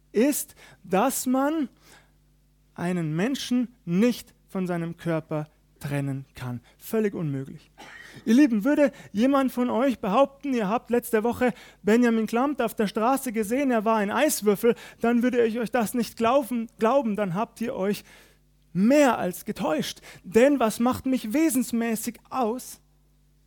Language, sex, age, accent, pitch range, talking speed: German, male, 30-49, German, 185-240 Hz, 140 wpm